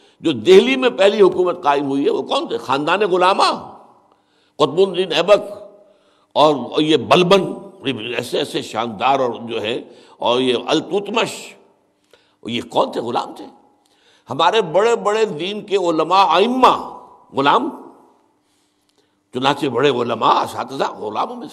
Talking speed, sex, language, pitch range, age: 135 wpm, male, Urdu, 140-205 Hz, 60-79